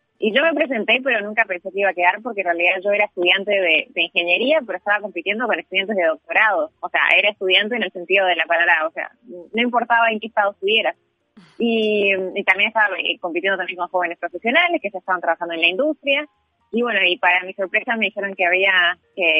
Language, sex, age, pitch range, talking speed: Spanish, female, 20-39, 175-215 Hz, 225 wpm